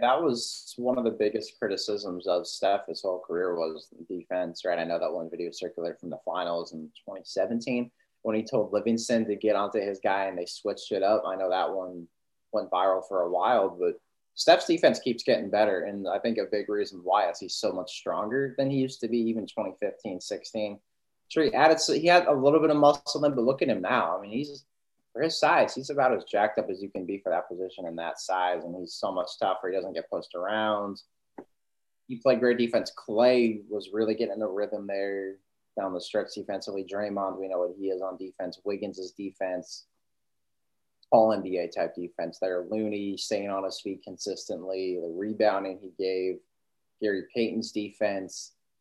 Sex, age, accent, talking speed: male, 20-39, American, 205 wpm